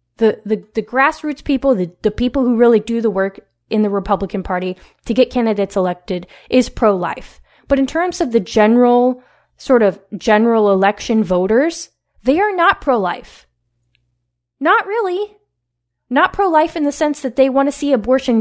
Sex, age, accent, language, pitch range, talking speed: female, 10-29, American, English, 200-290 Hz, 165 wpm